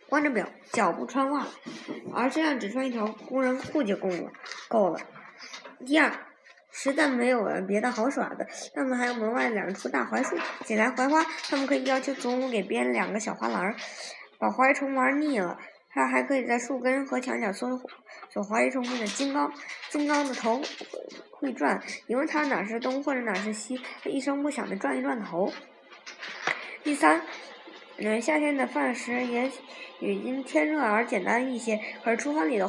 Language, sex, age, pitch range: Chinese, male, 20-39, 225-280 Hz